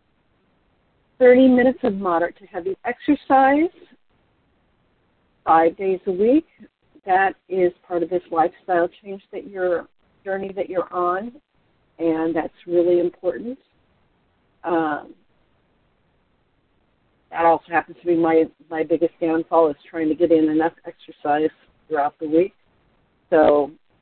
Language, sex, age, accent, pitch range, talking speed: English, female, 50-69, American, 160-195 Hz, 120 wpm